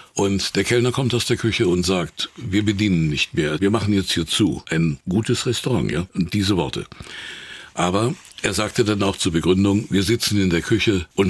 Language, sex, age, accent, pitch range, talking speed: German, male, 60-79, German, 95-115 Hz, 195 wpm